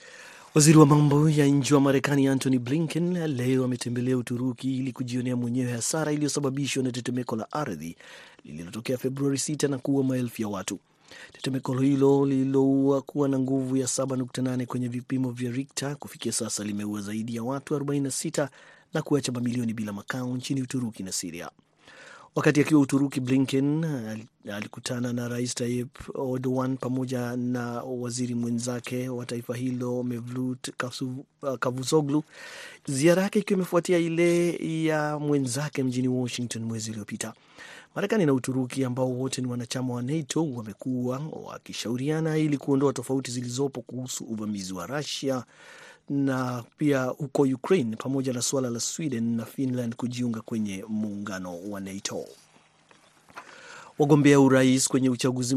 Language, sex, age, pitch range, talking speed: Swahili, male, 30-49, 125-140 Hz, 135 wpm